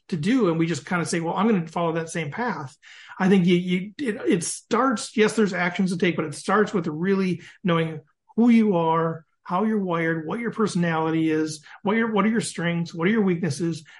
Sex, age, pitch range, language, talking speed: male, 40-59, 165-205 Hz, English, 230 wpm